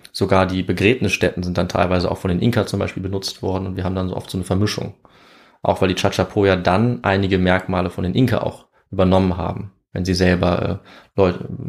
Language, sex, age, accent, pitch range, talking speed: German, male, 20-39, German, 95-105 Hz, 205 wpm